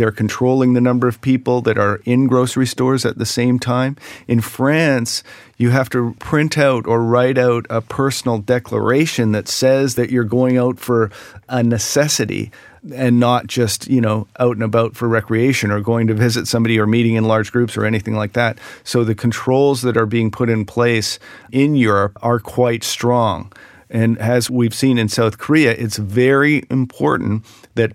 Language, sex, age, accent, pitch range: Korean, male, 40-59, American, 115-130 Hz